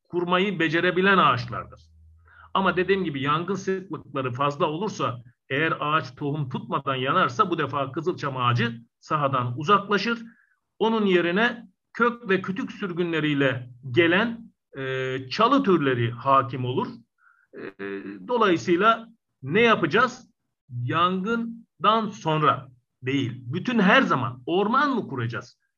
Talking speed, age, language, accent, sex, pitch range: 105 wpm, 50-69, Turkish, native, male, 135-205 Hz